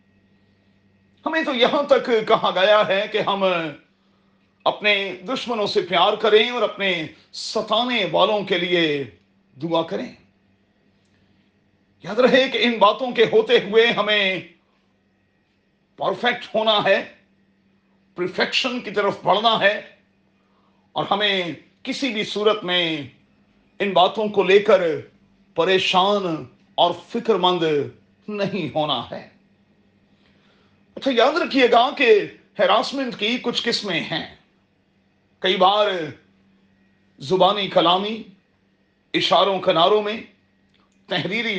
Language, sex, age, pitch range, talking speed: Urdu, male, 40-59, 155-220 Hz, 110 wpm